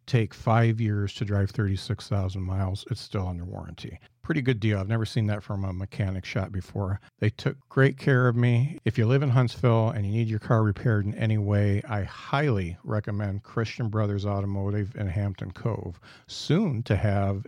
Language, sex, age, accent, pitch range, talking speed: English, male, 50-69, American, 105-125 Hz, 190 wpm